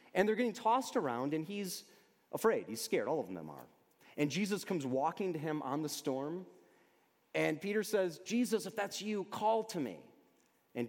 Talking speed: 185 wpm